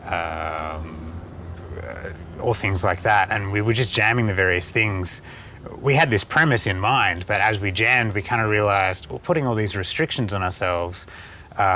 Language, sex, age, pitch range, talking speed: English, male, 30-49, 85-105 Hz, 175 wpm